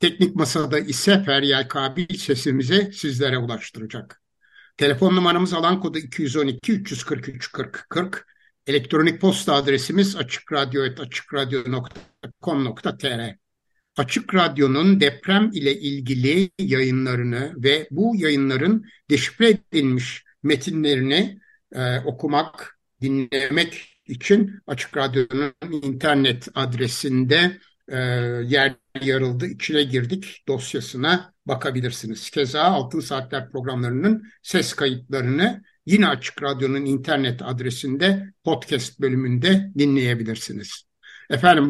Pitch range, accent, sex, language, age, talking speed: 135-175 Hz, native, male, Turkish, 60-79, 85 wpm